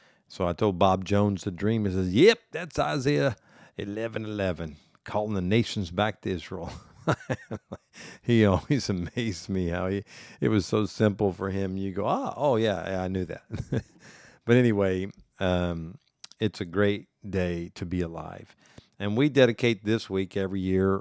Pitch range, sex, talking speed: 90-105 Hz, male, 160 wpm